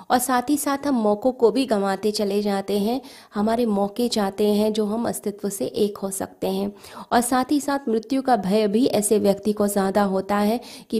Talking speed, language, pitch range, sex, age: 215 wpm, Hindi, 200-230 Hz, female, 20-39